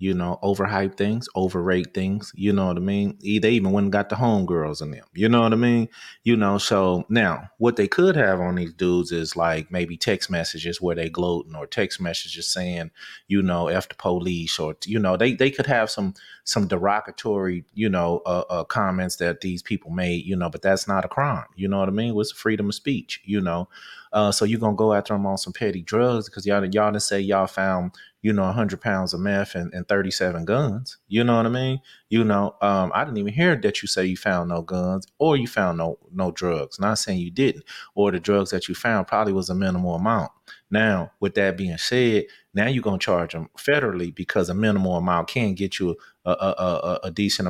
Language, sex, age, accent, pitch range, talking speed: English, male, 30-49, American, 90-105 Hz, 230 wpm